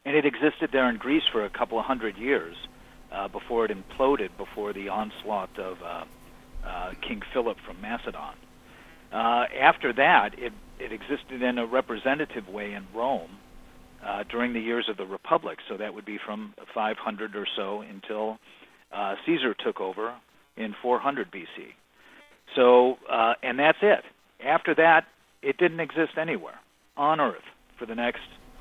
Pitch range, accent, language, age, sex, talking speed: 110-140 Hz, American, English, 50-69, male, 160 wpm